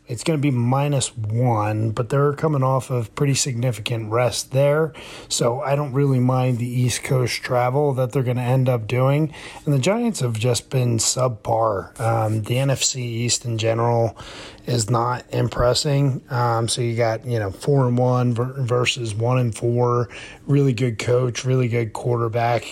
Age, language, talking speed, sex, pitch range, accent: 30-49, English, 175 wpm, male, 115-135 Hz, American